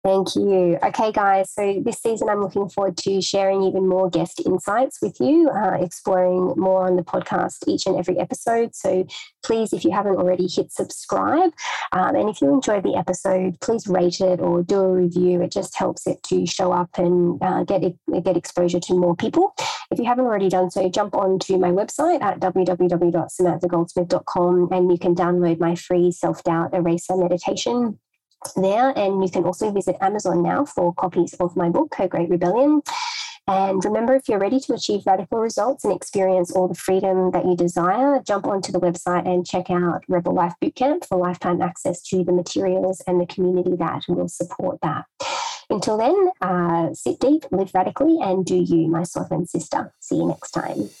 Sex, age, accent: female, 20-39, Australian